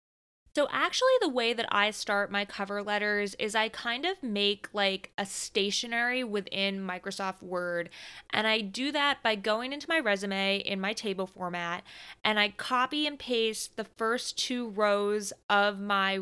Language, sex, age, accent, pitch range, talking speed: English, female, 20-39, American, 190-230 Hz, 165 wpm